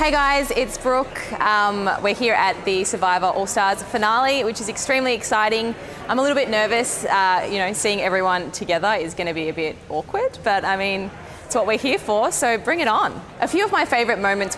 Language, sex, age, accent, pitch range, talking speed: English, female, 20-39, Australian, 185-225 Hz, 210 wpm